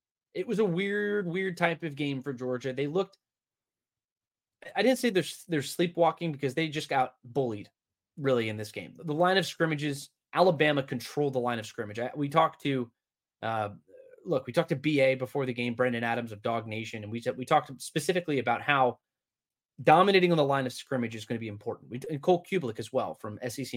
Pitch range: 125-170 Hz